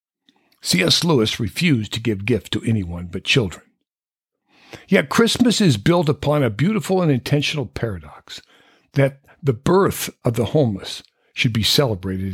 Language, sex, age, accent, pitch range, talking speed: English, male, 60-79, American, 110-160 Hz, 140 wpm